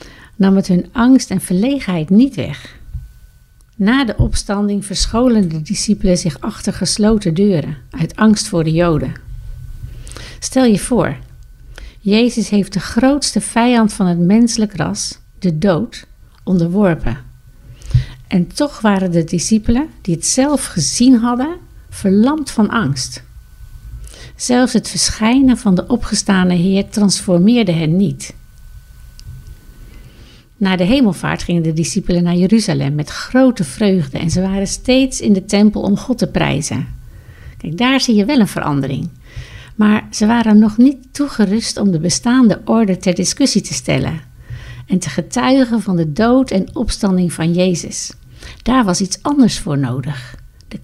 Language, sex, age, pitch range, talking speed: Dutch, female, 60-79, 165-225 Hz, 145 wpm